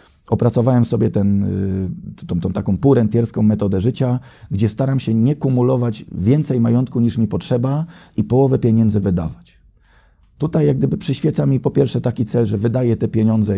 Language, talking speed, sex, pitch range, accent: Polish, 155 wpm, male, 105-135 Hz, native